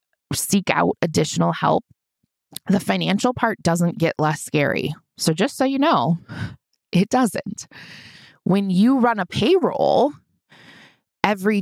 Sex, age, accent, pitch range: female, 20-39, American, 160-210 Hz